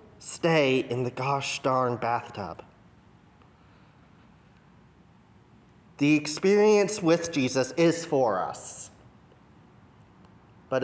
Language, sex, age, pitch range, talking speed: English, male, 30-49, 135-175 Hz, 80 wpm